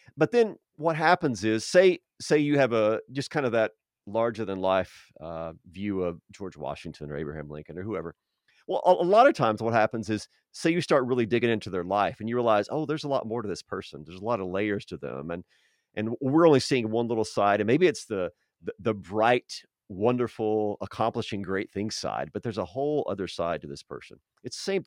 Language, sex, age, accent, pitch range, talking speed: English, male, 40-59, American, 100-140 Hz, 225 wpm